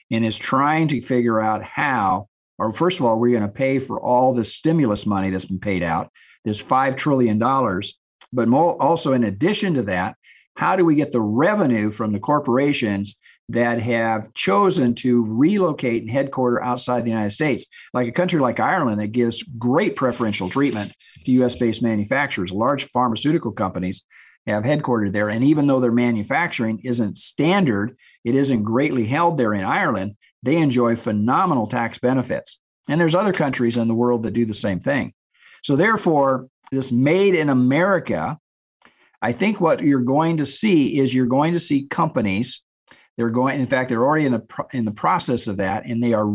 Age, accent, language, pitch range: 50-69, American, English, 110-145 Hz